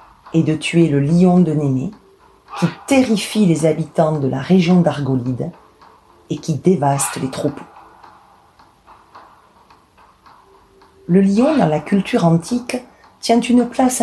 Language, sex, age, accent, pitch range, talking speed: French, female, 40-59, French, 145-190 Hz, 125 wpm